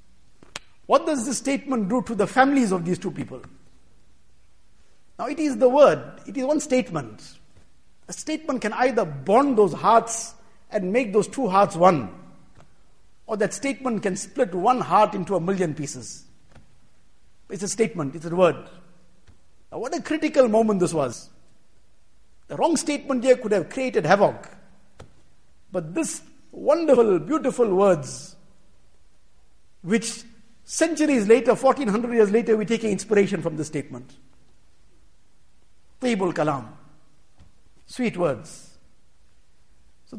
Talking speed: 130 wpm